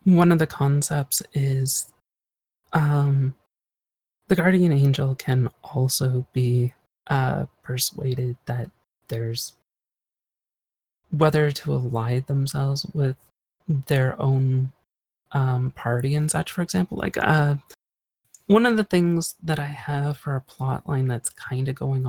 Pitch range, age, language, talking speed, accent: 120-145 Hz, 30-49, English, 125 wpm, American